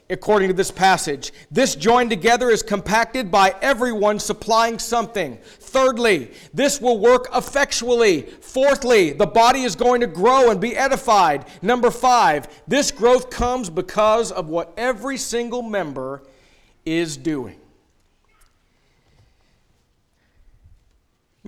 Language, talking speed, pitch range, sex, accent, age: English, 115 wpm, 155-225 Hz, male, American, 50-69